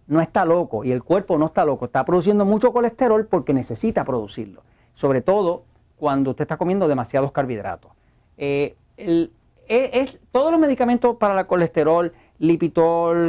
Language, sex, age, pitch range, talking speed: Spanish, male, 40-59, 145-215 Hz, 155 wpm